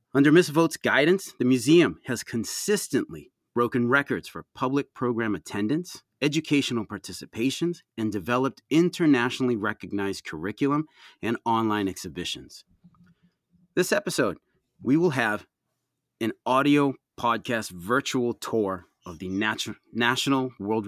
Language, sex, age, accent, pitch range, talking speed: English, male, 30-49, American, 100-140 Hz, 110 wpm